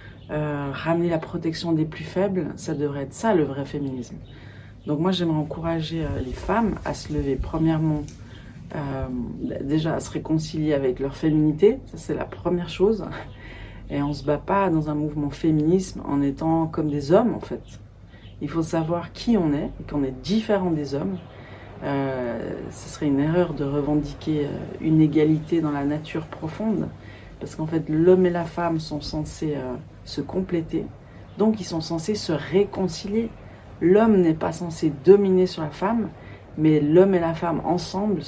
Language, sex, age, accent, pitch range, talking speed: French, female, 40-59, French, 135-175 Hz, 175 wpm